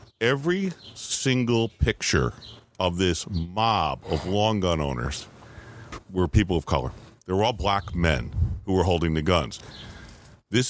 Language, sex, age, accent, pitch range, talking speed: English, male, 50-69, American, 85-115 Hz, 140 wpm